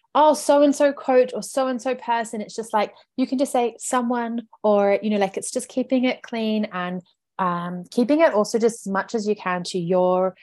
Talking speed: 230 wpm